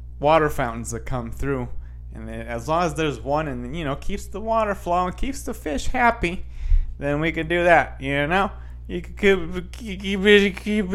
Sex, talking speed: male, 190 wpm